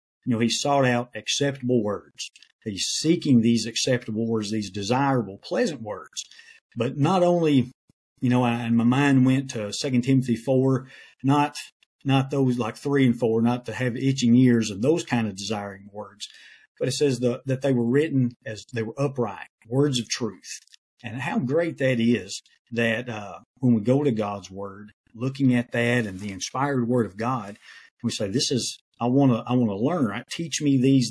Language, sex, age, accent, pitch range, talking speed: English, male, 50-69, American, 115-135 Hz, 195 wpm